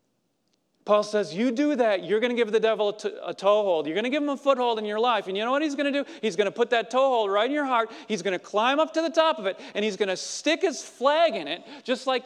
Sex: male